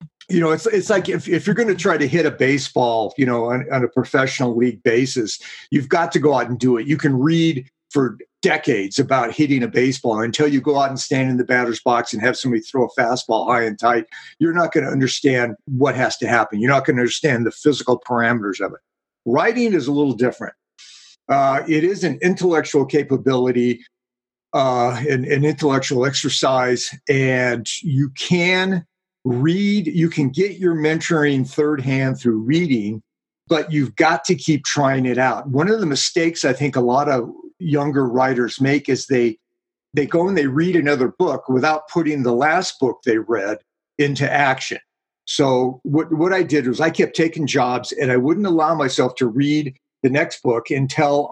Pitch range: 125-160 Hz